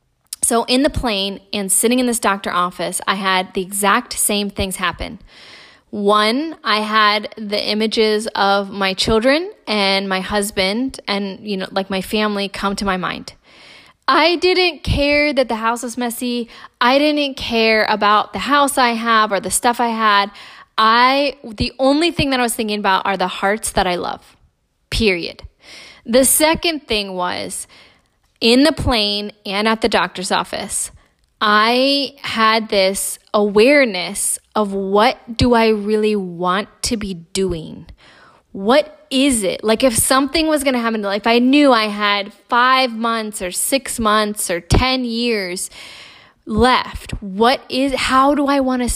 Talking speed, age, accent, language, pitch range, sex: 165 wpm, 10-29, American, English, 200-255 Hz, female